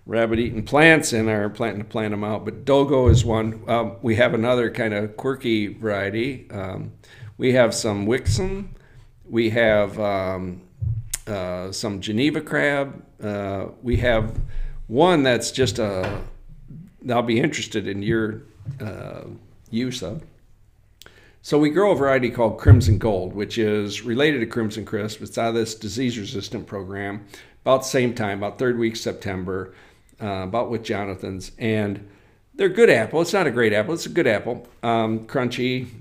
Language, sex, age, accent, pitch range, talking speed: English, male, 50-69, American, 105-125 Hz, 160 wpm